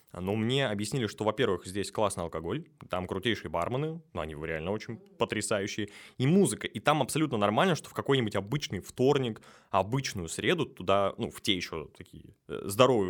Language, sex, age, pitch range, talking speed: Russian, male, 20-39, 100-130 Hz, 165 wpm